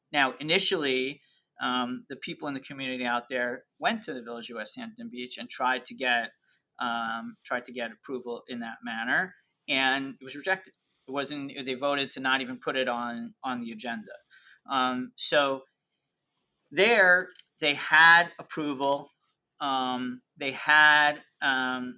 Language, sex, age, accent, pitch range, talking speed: English, male, 30-49, American, 125-140 Hz, 155 wpm